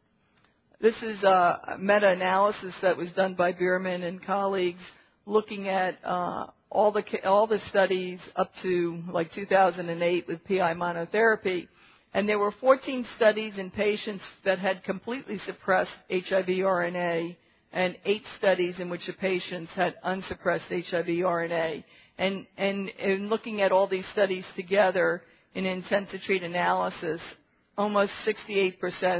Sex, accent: female, American